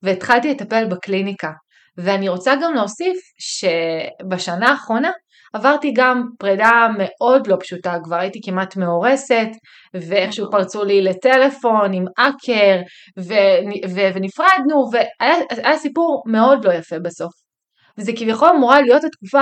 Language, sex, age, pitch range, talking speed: Hebrew, female, 30-49, 190-280 Hz, 125 wpm